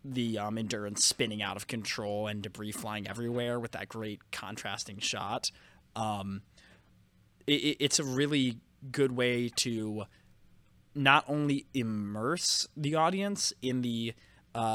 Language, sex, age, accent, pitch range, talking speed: English, male, 20-39, American, 105-130 Hz, 125 wpm